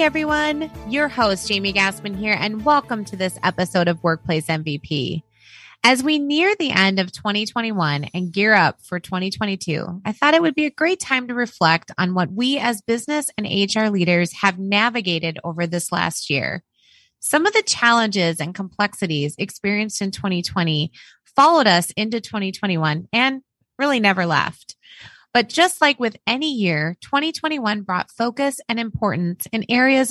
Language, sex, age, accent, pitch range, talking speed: English, female, 20-39, American, 175-265 Hz, 160 wpm